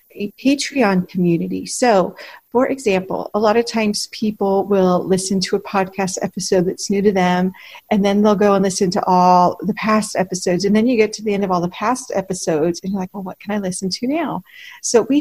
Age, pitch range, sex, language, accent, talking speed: 40-59, 185-220 Hz, female, English, American, 220 wpm